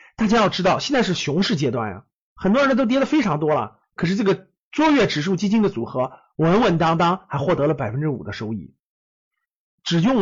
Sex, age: male, 50-69